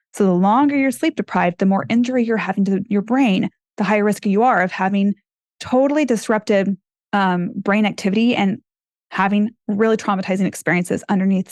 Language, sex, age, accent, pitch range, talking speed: English, female, 20-39, American, 190-225 Hz, 170 wpm